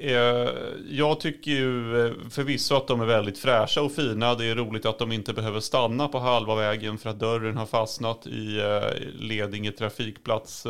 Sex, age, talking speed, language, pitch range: male, 30-49, 175 wpm, Swedish, 110-135 Hz